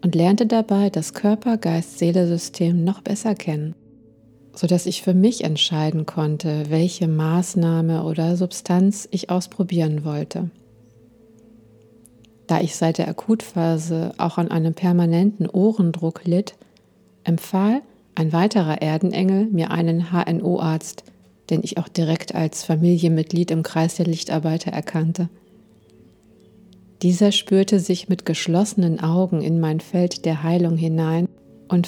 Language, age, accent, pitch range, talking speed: German, 50-69, German, 160-185 Hz, 125 wpm